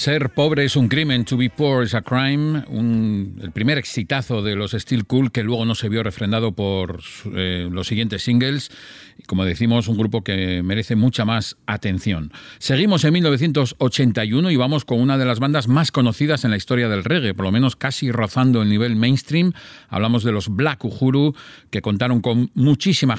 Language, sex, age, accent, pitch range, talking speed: English, male, 50-69, Spanish, 105-135 Hz, 185 wpm